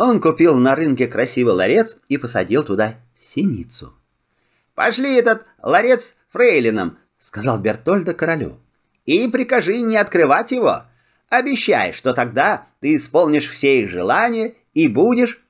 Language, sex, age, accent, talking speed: Russian, male, 30-49, native, 125 wpm